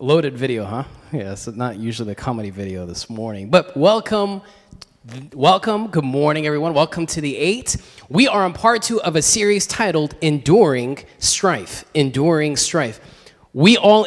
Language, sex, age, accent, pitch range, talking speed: English, male, 20-39, American, 130-170 Hz, 160 wpm